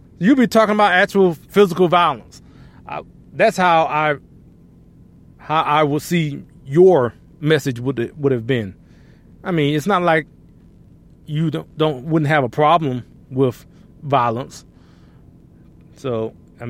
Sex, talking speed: male, 135 wpm